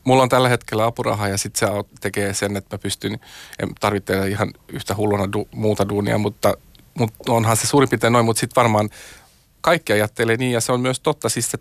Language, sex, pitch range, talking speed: Finnish, male, 105-120 Hz, 210 wpm